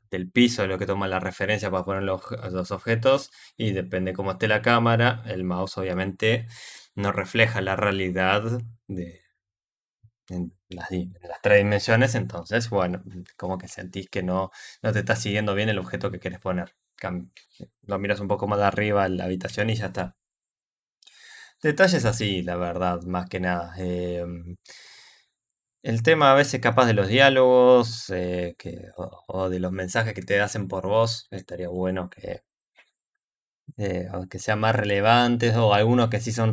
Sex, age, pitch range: male, 20-39, 95-110 Hz